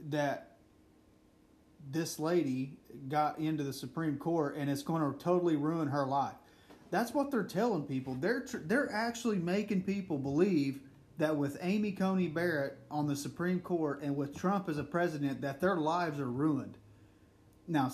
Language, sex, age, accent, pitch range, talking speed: English, male, 30-49, American, 135-175 Hz, 160 wpm